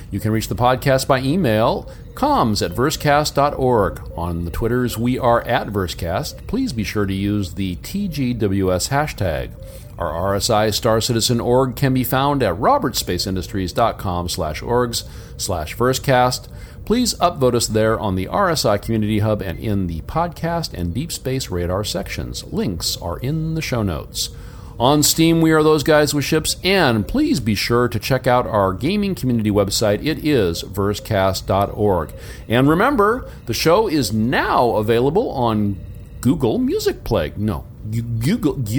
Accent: American